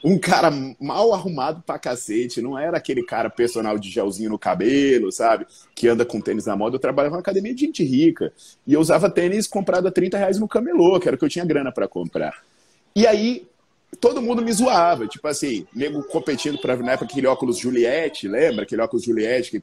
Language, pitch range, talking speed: Portuguese, 150-240 Hz, 210 wpm